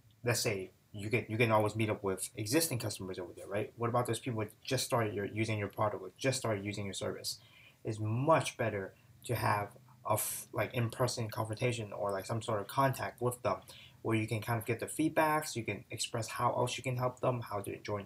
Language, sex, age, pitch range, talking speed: English, male, 20-39, 105-125 Hz, 235 wpm